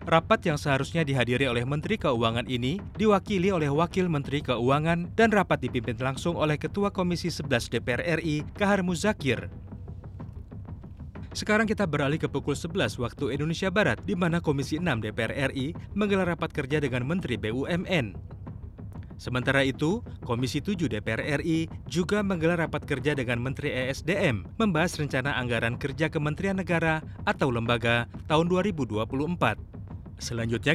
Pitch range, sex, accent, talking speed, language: 120-175 Hz, male, native, 135 wpm, Indonesian